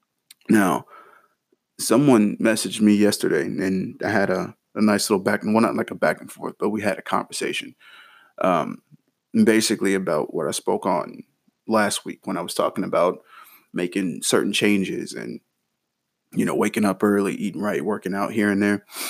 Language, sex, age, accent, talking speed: English, male, 20-39, American, 175 wpm